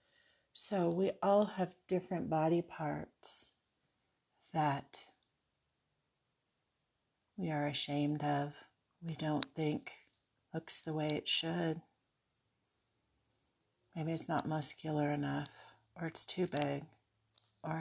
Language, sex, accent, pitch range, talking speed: English, female, American, 110-170 Hz, 100 wpm